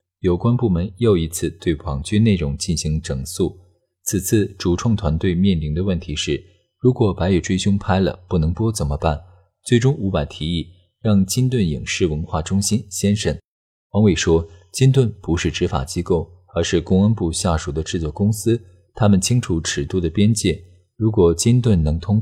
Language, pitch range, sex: Chinese, 85-105 Hz, male